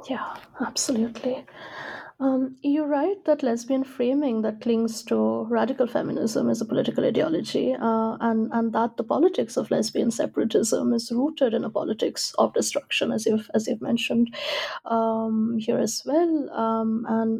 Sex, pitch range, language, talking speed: female, 225-280 Hz, English, 150 wpm